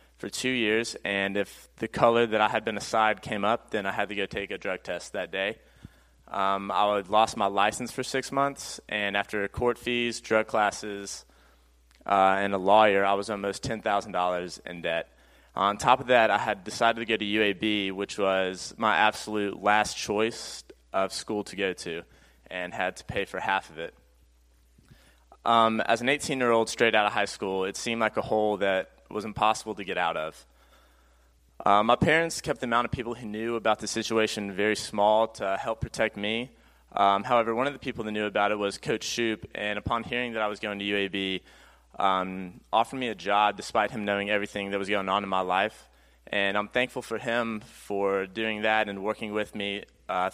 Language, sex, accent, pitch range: English, male, American, 95-110 Hz